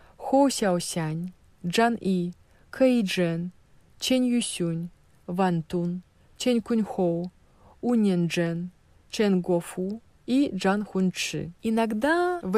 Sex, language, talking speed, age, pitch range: female, Russian, 75 wpm, 20-39, 180-230 Hz